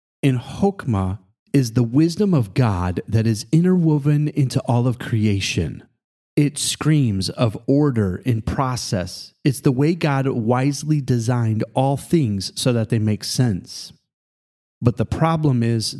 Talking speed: 140 wpm